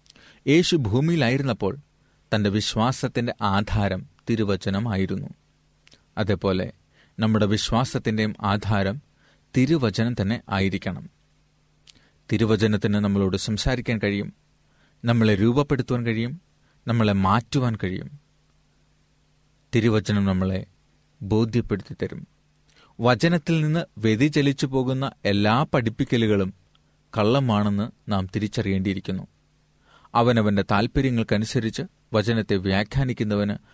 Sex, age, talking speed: male, 30-49, 70 wpm